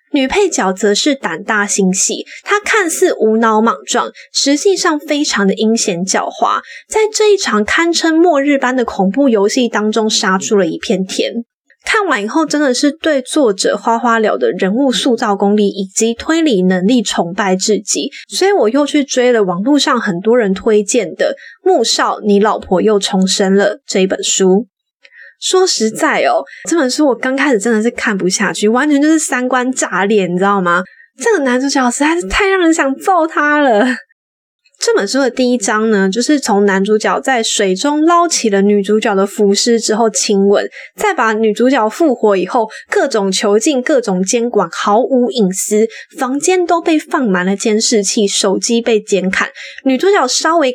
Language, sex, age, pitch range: Chinese, female, 20-39, 205-300 Hz